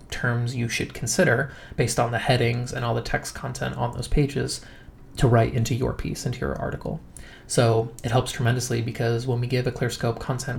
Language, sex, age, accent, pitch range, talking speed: English, male, 20-39, American, 120-135 Hz, 200 wpm